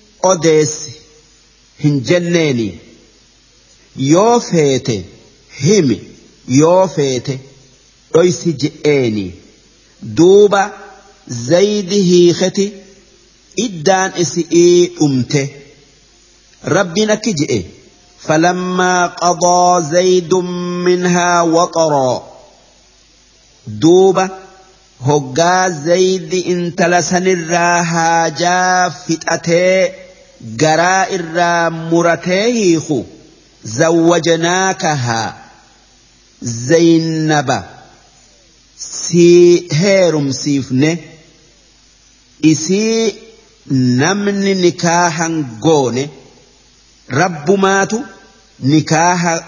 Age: 50-69